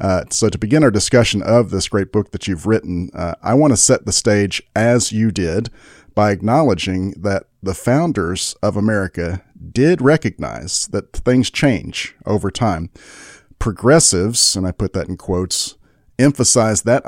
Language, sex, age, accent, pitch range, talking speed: English, male, 40-59, American, 95-125 Hz, 160 wpm